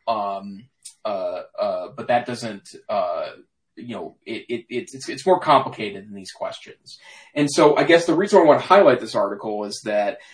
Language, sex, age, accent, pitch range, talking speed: English, male, 20-39, American, 110-150 Hz, 190 wpm